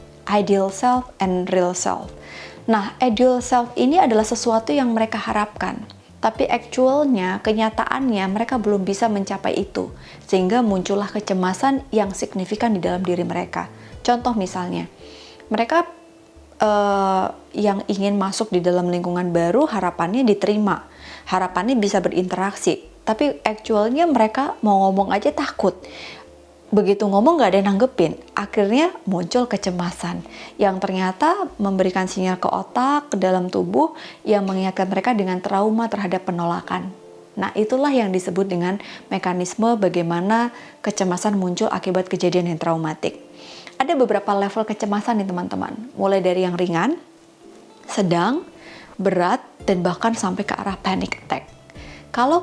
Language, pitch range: Indonesian, 185-235 Hz